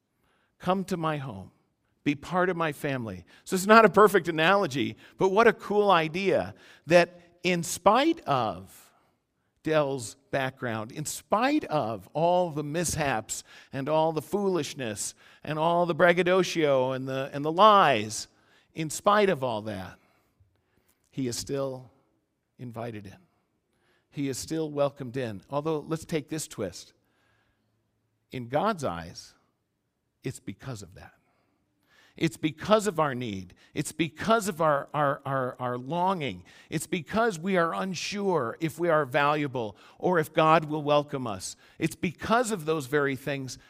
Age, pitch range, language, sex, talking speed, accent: 50-69, 115-170 Hz, English, male, 145 wpm, American